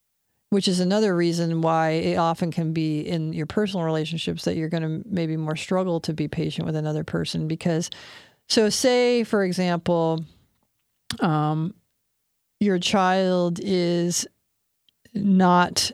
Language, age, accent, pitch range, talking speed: English, 40-59, American, 160-200 Hz, 135 wpm